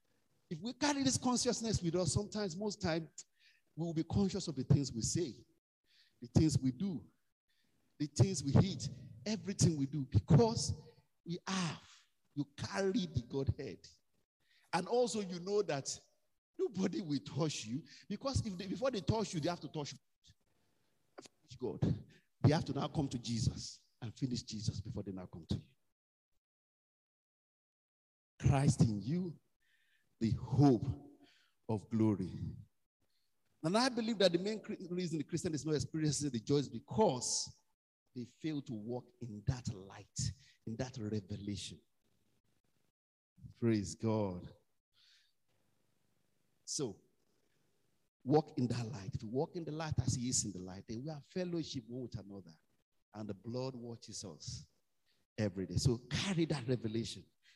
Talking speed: 150 wpm